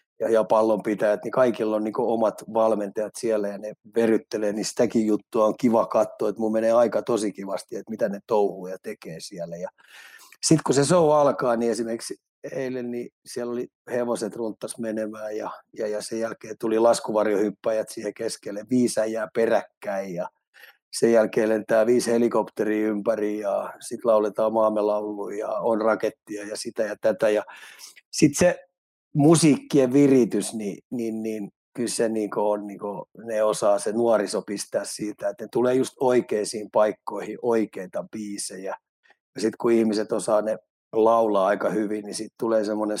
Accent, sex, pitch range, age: native, male, 105-120 Hz, 30-49